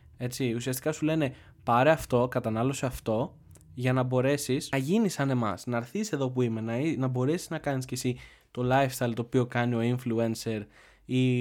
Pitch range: 115-135 Hz